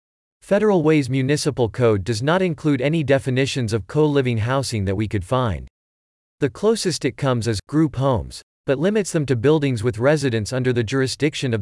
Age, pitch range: 40-59, 110-150 Hz